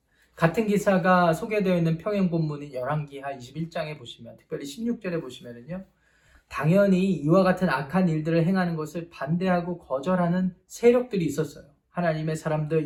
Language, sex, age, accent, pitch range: Korean, male, 20-39, native, 155-200 Hz